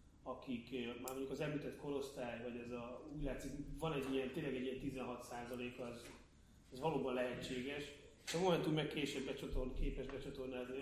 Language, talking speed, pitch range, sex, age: Hungarian, 165 wpm, 125-150 Hz, male, 30-49